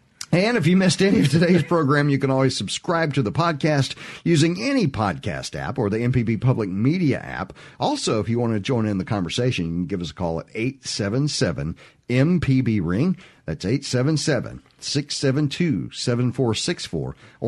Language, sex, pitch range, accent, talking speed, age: English, male, 110-145 Hz, American, 150 wpm, 50-69